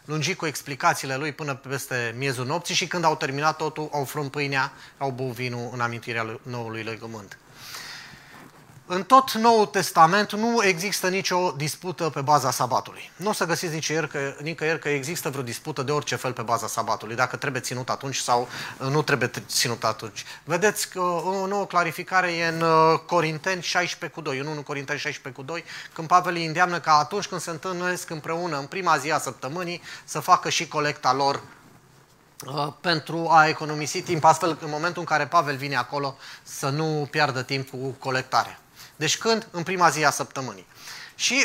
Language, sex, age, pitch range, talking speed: Romanian, male, 30-49, 135-175 Hz, 170 wpm